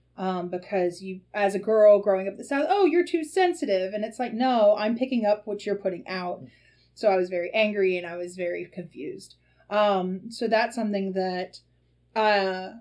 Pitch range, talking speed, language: 180-205 Hz, 190 wpm, English